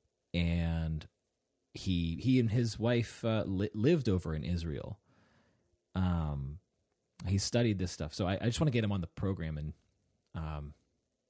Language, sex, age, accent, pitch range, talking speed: English, male, 30-49, American, 85-110 Hz, 160 wpm